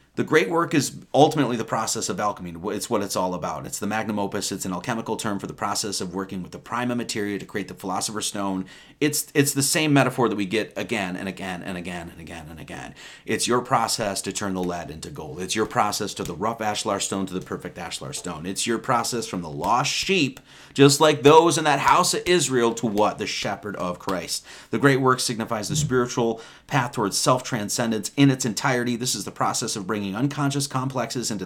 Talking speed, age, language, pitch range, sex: 225 wpm, 30-49, English, 100-140 Hz, male